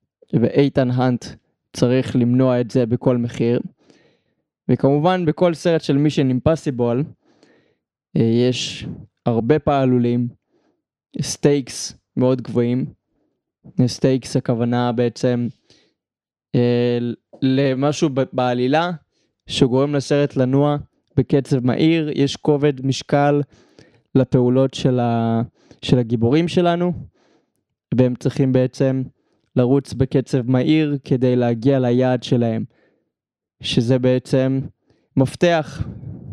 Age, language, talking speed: 20-39, Hebrew, 85 wpm